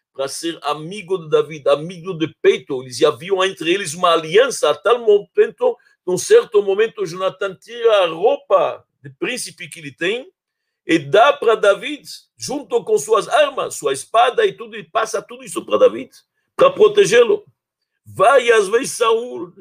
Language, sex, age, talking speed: Portuguese, male, 60-79, 165 wpm